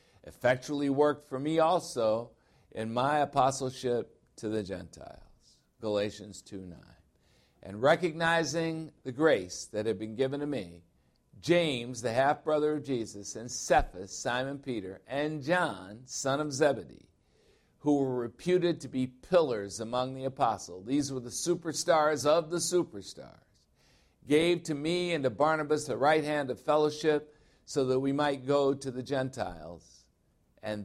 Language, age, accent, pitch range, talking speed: English, 60-79, American, 100-140 Hz, 140 wpm